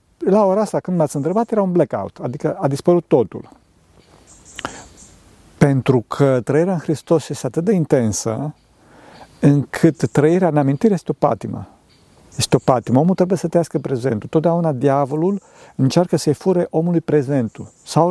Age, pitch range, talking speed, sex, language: 50-69, 125-165 Hz, 150 wpm, male, Romanian